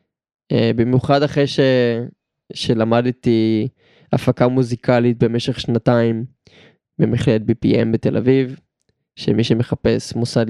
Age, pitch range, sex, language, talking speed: 20-39, 115-125 Hz, male, Hebrew, 80 wpm